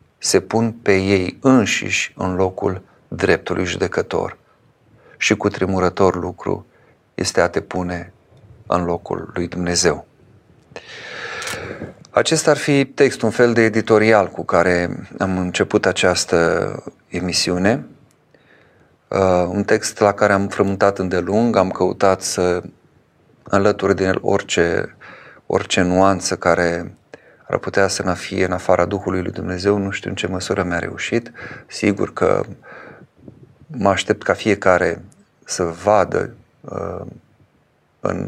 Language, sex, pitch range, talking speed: Romanian, male, 90-105 Hz, 120 wpm